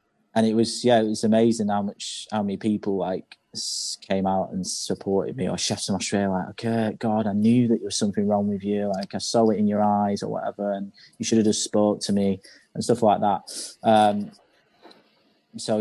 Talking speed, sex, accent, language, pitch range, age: 215 wpm, male, British, English, 100-115 Hz, 20-39